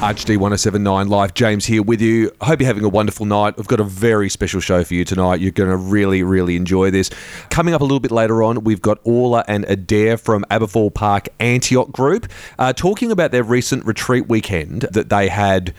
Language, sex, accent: English, male, Australian